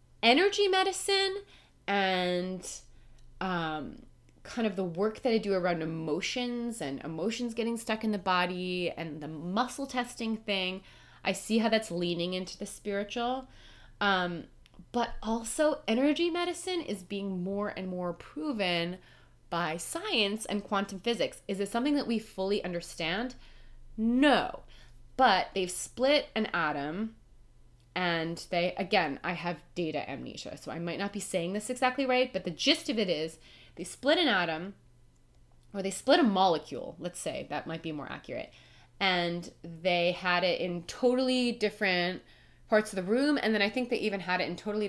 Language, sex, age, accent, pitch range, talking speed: English, female, 20-39, American, 170-230 Hz, 160 wpm